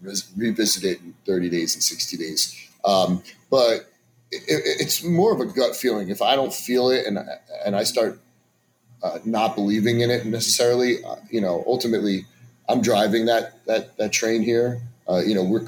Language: English